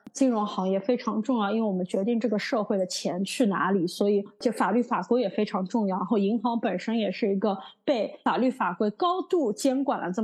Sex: female